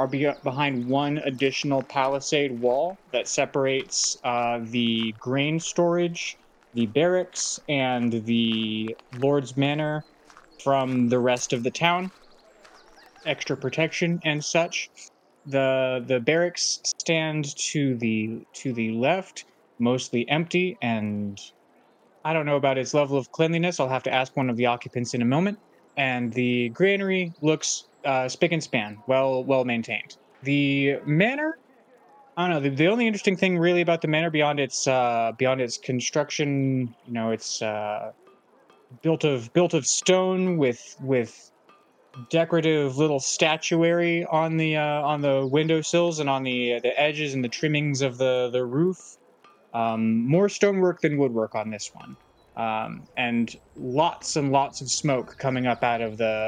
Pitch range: 125-160 Hz